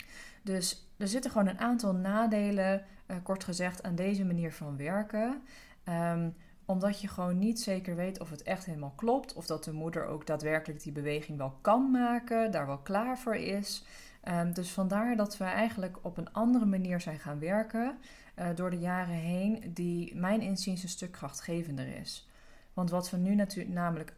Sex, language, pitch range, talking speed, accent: female, Dutch, 170-215 Hz, 185 wpm, Dutch